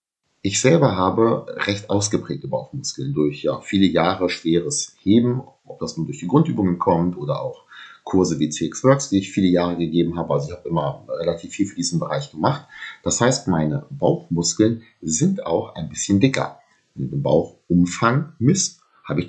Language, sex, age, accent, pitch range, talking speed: German, male, 30-49, German, 85-120 Hz, 175 wpm